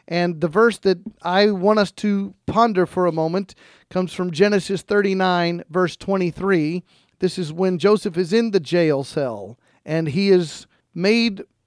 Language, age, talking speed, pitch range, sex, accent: English, 40-59, 160 wpm, 170-210 Hz, male, American